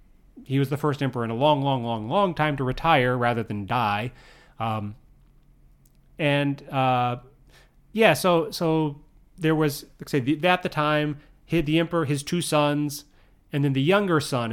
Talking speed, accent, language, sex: 165 wpm, American, English, male